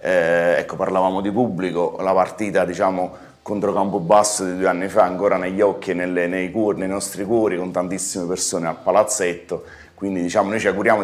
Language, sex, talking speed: Italian, male, 175 wpm